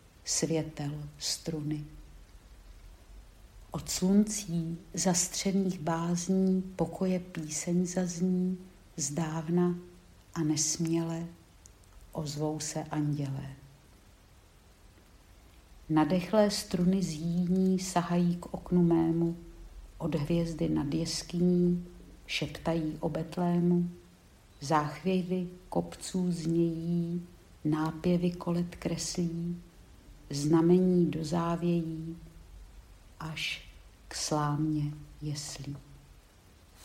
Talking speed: 70 wpm